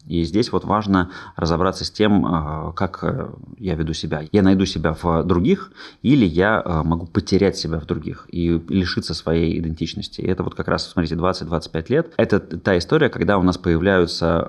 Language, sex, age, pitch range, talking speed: Russian, male, 20-39, 85-100 Hz, 170 wpm